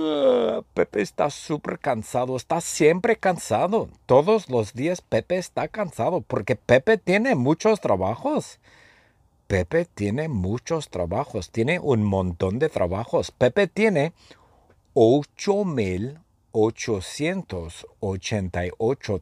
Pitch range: 95-155 Hz